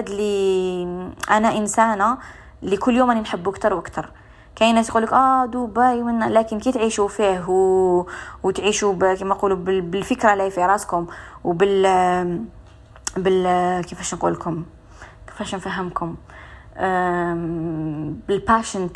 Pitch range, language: 180-215 Hz, Arabic